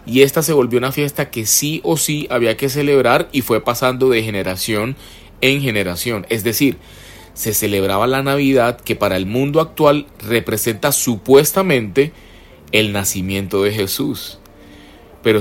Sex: male